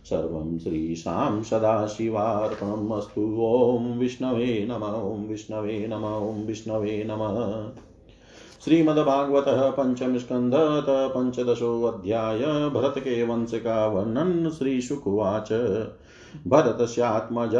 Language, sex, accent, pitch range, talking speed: Hindi, male, native, 110-125 Hz, 75 wpm